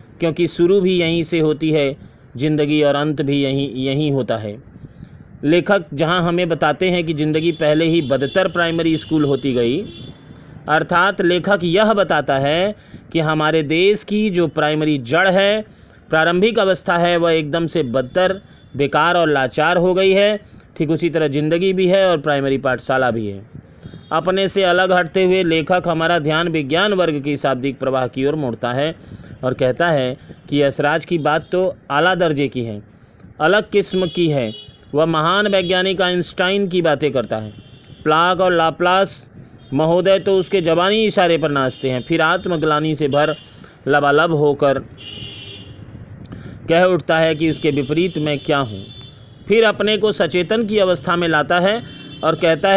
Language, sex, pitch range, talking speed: Hindi, male, 140-180 Hz, 165 wpm